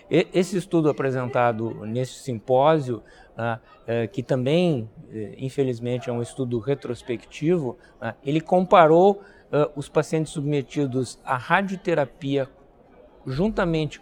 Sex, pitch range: male, 125-160 Hz